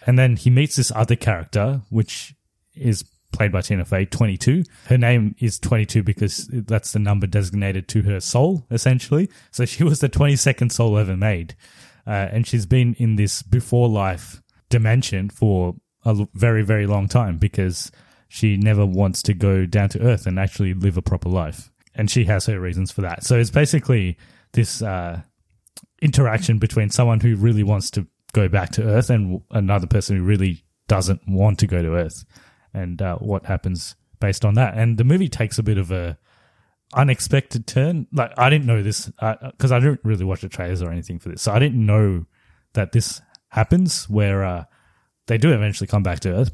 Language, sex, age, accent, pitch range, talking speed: English, male, 20-39, Australian, 95-120 Hz, 190 wpm